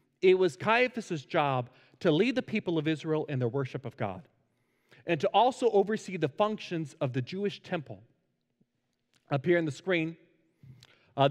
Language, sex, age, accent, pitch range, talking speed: English, male, 40-59, American, 135-190 Hz, 165 wpm